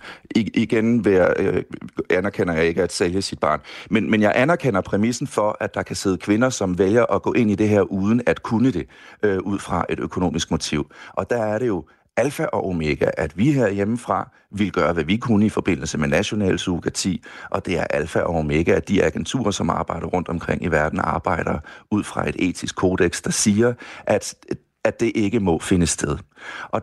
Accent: native